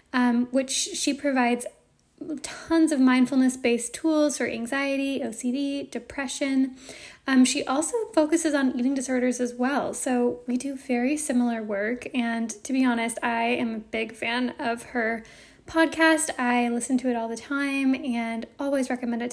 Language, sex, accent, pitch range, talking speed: English, female, American, 235-275 Hz, 155 wpm